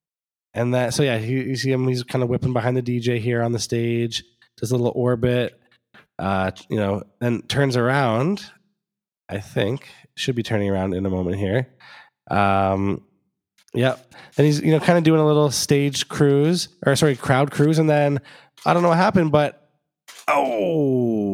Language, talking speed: English, 180 wpm